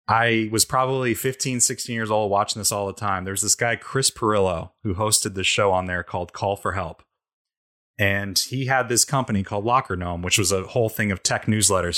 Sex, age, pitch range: male, 30-49, 100-120 Hz